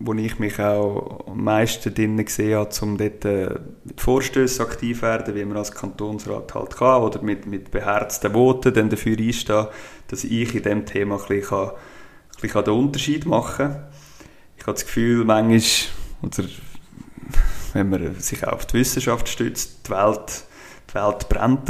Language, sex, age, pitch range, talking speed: German, male, 30-49, 105-120 Hz, 175 wpm